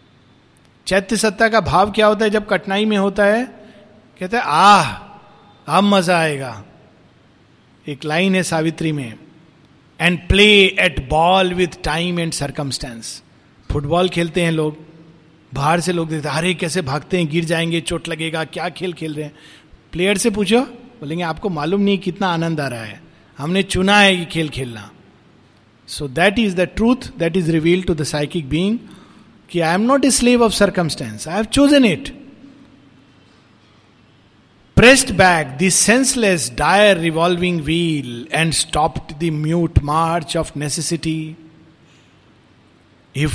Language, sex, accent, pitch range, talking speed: Hindi, male, native, 140-185 Hz, 150 wpm